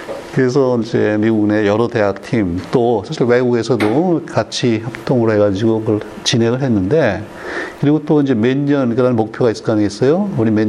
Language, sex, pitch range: Korean, male, 105-135 Hz